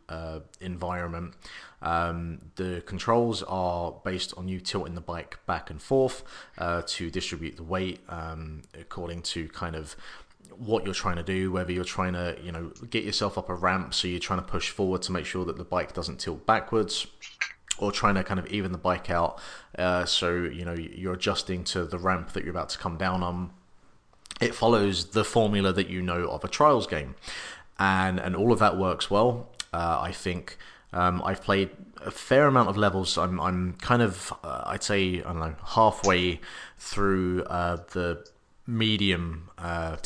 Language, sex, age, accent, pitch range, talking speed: English, male, 30-49, British, 85-100 Hz, 190 wpm